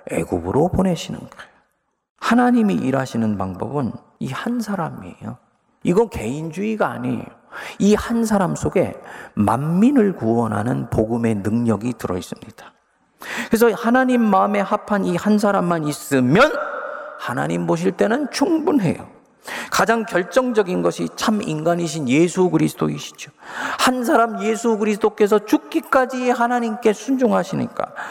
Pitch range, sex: 150-230 Hz, male